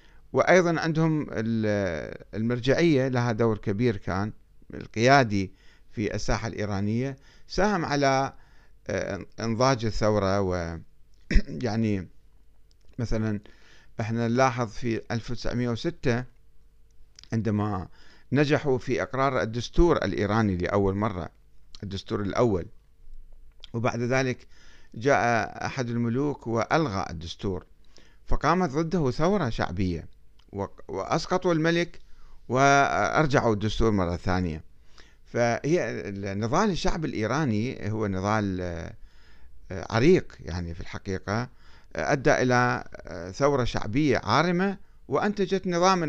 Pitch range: 100-135 Hz